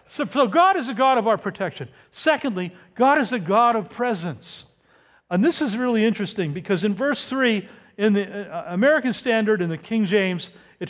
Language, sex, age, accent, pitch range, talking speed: English, male, 60-79, American, 160-225 Hz, 195 wpm